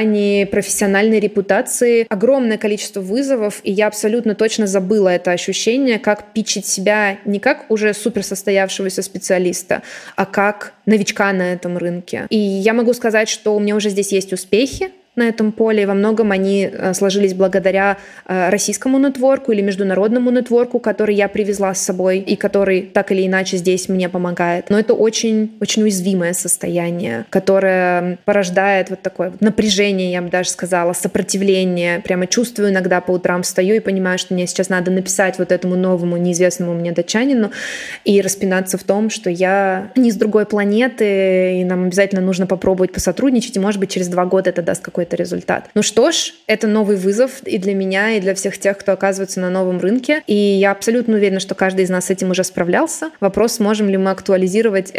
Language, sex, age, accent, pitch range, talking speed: Russian, female, 20-39, native, 185-215 Hz, 175 wpm